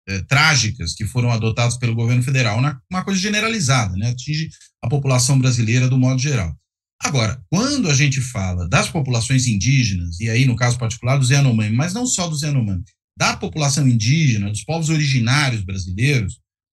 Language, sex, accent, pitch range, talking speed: Portuguese, male, Brazilian, 115-150 Hz, 160 wpm